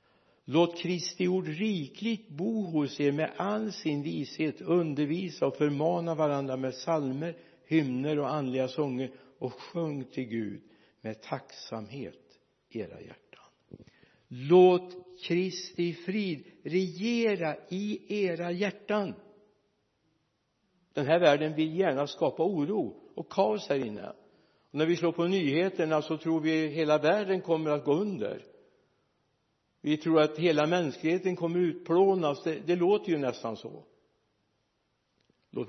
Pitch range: 135-180 Hz